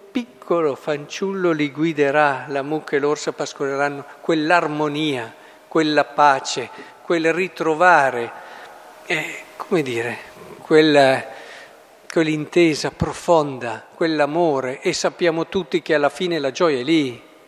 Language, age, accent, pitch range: Italian, 50-69, native, 145-180 Hz